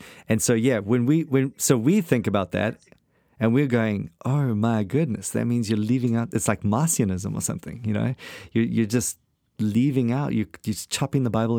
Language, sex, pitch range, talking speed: English, male, 100-125 Hz, 200 wpm